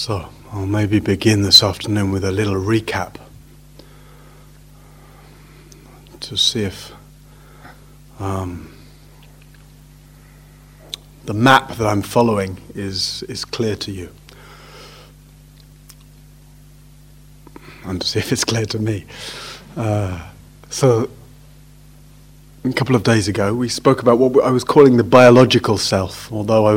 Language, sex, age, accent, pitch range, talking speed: English, male, 30-49, British, 105-145 Hz, 115 wpm